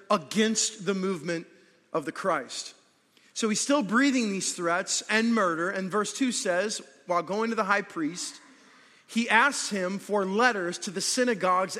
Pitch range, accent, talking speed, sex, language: 195-245 Hz, American, 165 wpm, male, English